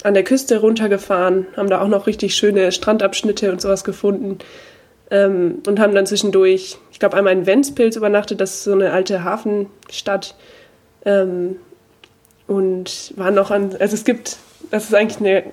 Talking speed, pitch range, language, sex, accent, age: 165 wpm, 195-220 Hz, German, female, German, 20-39